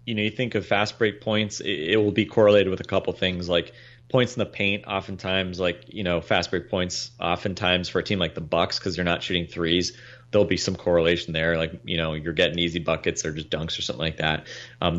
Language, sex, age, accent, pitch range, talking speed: English, male, 30-49, American, 90-105 Hz, 245 wpm